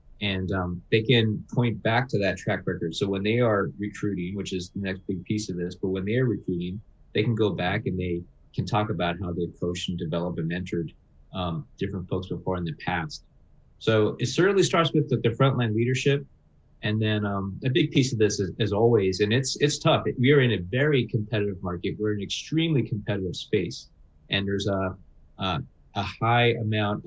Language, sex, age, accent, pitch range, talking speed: English, male, 30-49, American, 95-120 Hz, 215 wpm